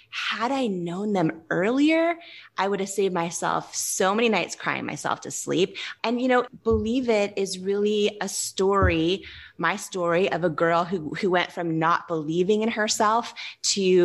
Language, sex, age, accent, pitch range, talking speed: English, female, 20-39, American, 175-220 Hz, 170 wpm